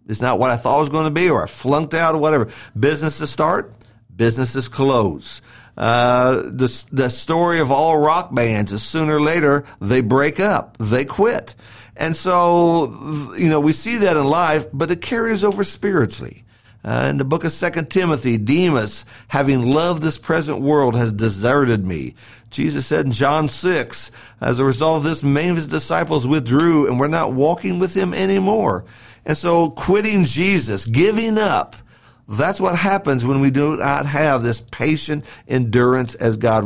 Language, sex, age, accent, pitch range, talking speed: English, male, 50-69, American, 120-160 Hz, 175 wpm